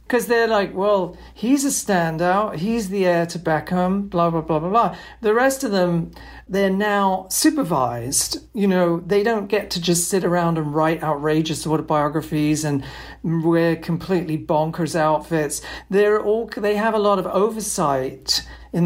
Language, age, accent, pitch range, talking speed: English, 50-69, British, 155-195 Hz, 155 wpm